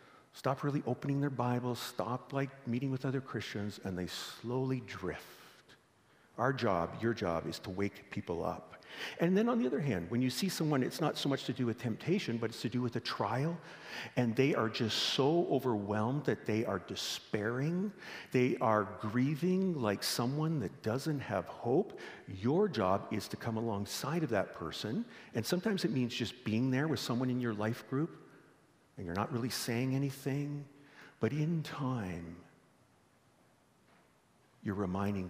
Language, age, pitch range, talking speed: English, 50-69, 95-135 Hz, 170 wpm